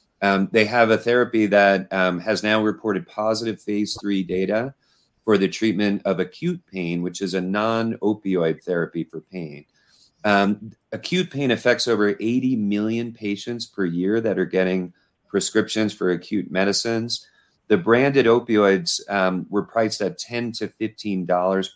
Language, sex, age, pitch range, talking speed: English, male, 40-59, 95-115 Hz, 150 wpm